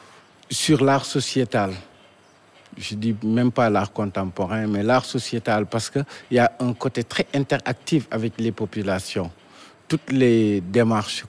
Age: 50-69